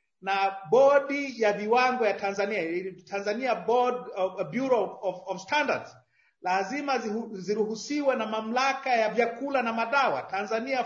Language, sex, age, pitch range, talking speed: Swahili, male, 40-59, 210-275 Hz, 110 wpm